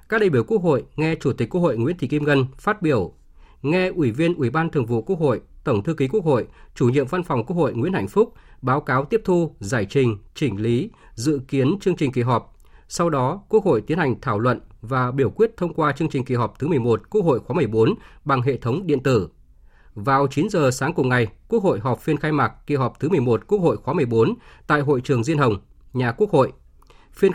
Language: Vietnamese